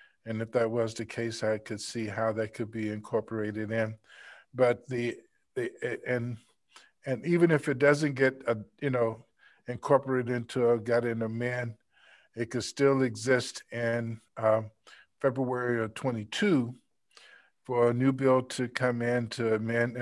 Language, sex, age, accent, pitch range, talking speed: English, male, 50-69, American, 110-125 Hz, 155 wpm